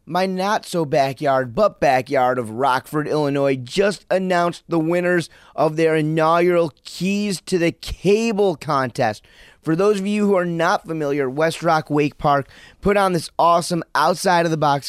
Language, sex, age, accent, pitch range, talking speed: English, male, 30-49, American, 140-175 Hz, 135 wpm